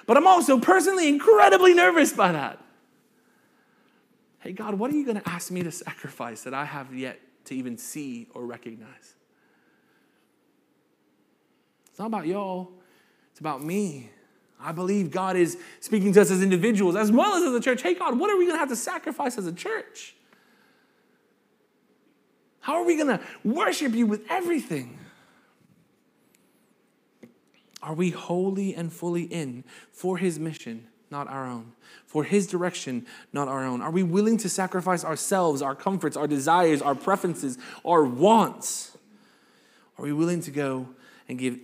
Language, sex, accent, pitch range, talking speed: English, male, American, 140-230 Hz, 160 wpm